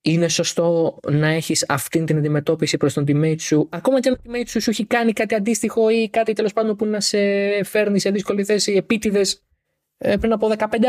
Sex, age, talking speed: male, 20-39, 205 wpm